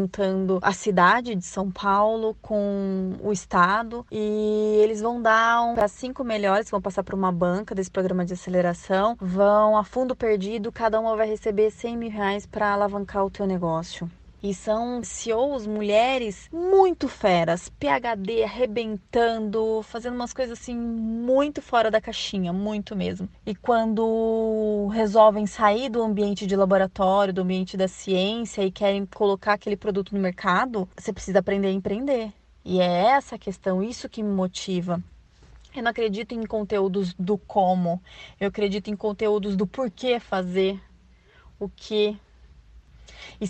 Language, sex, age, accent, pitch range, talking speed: Portuguese, female, 20-39, Brazilian, 195-235 Hz, 150 wpm